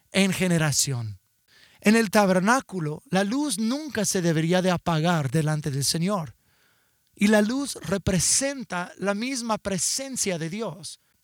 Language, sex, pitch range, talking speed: English, male, 160-215 Hz, 130 wpm